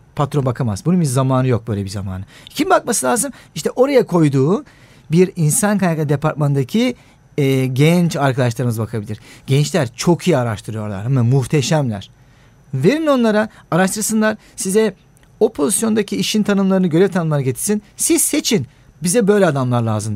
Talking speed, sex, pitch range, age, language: 135 wpm, male, 135-200 Hz, 40-59, Turkish